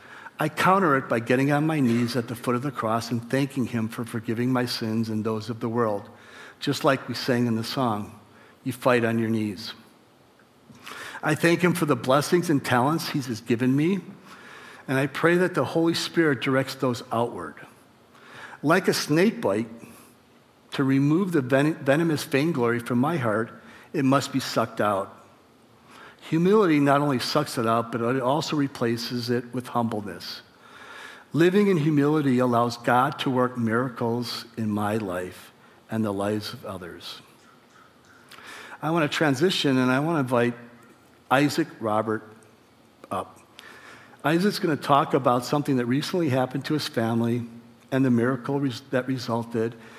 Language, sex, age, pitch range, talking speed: English, male, 60-79, 115-145 Hz, 160 wpm